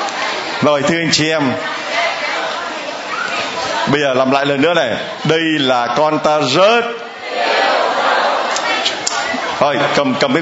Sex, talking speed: male, 120 wpm